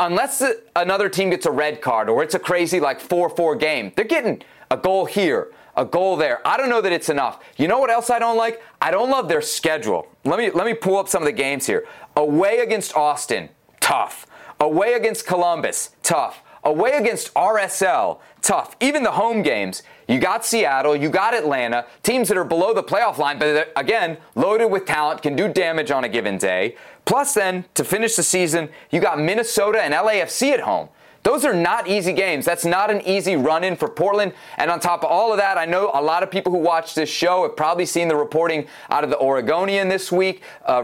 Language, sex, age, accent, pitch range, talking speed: English, male, 30-49, American, 155-200 Hz, 215 wpm